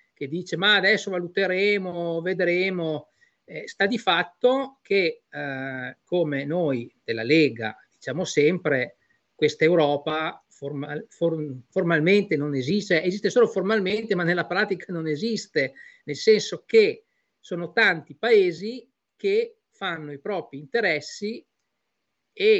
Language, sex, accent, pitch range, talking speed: Italian, male, native, 150-225 Hz, 110 wpm